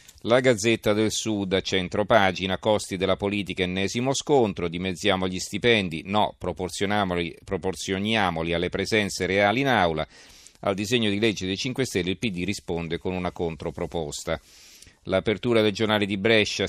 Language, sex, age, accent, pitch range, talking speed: Italian, male, 40-59, native, 90-110 Hz, 145 wpm